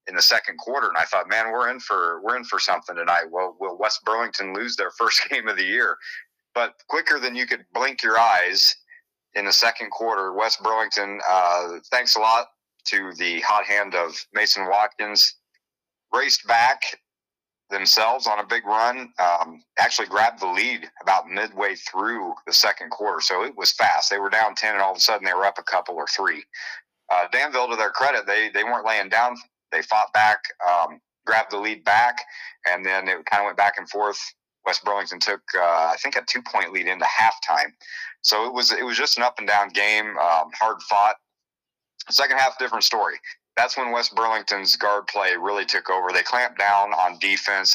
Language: English